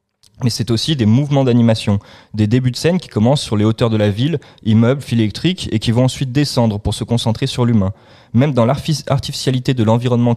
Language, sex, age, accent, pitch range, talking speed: French, male, 20-39, French, 110-130 Hz, 205 wpm